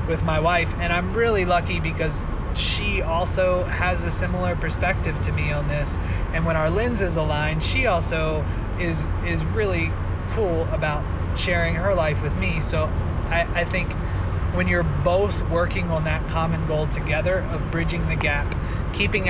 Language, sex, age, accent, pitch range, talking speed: English, male, 20-39, American, 80-90 Hz, 165 wpm